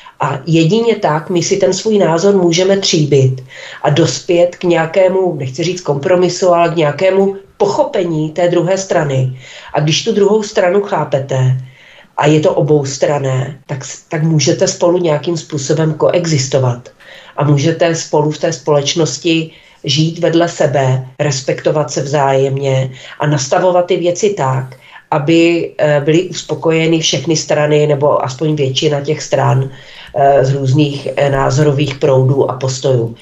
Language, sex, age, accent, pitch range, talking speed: Czech, female, 40-59, native, 145-185 Hz, 135 wpm